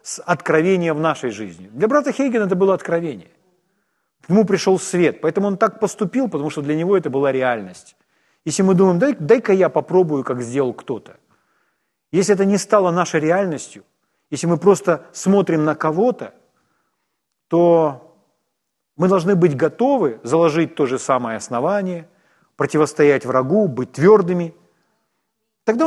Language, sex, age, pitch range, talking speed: Ukrainian, male, 40-59, 155-210 Hz, 145 wpm